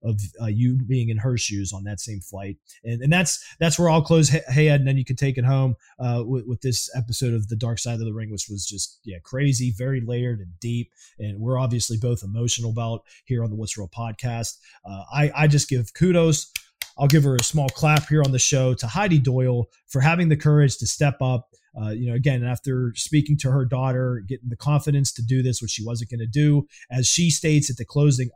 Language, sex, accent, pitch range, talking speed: English, male, American, 120-145 Hz, 235 wpm